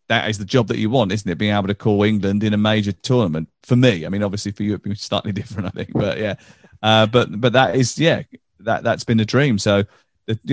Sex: male